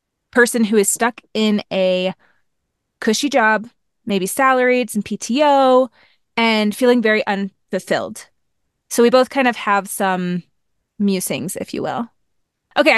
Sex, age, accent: female, 20-39, American